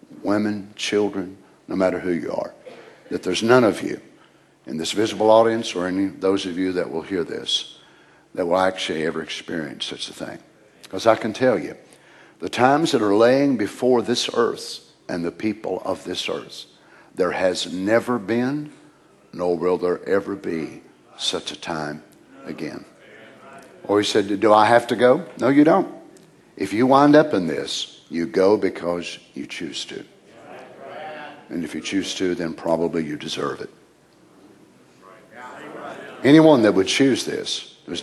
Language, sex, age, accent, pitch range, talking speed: English, male, 60-79, American, 90-120 Hz, 165 wpm